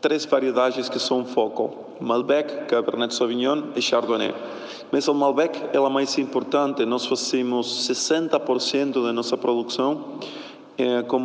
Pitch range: 120-135 Hz